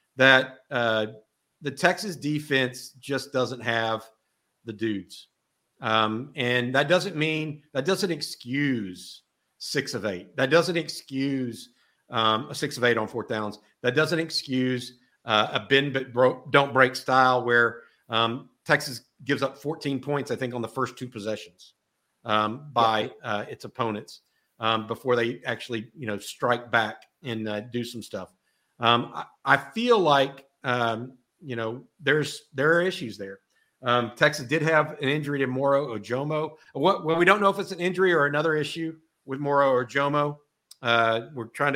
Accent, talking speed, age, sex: American, 165 wpm, 50-69, male